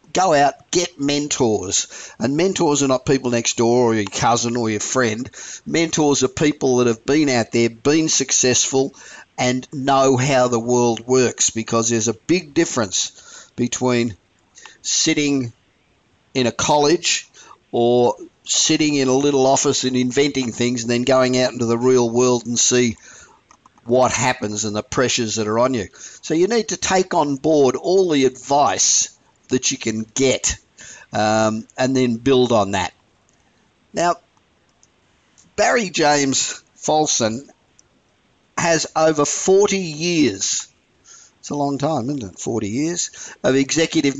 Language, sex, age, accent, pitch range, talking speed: English, male, 50-69, Australian, 120-145 Hz, 150 wpm